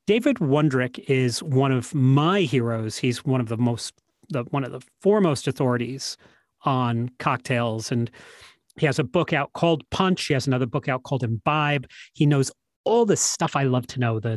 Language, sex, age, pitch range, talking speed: English, male, 40-59, 125-155 Hz, 190 wpm